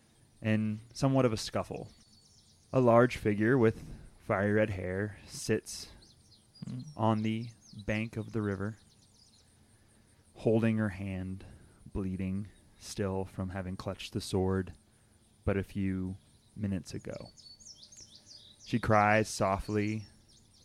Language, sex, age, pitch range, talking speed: English, male, 30-49, 100-110 Hz, 110 wpm